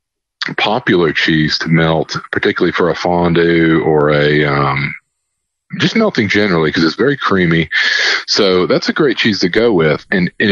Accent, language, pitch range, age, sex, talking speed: American, English, 80-105 Hz, 40-59, male, 160 wpm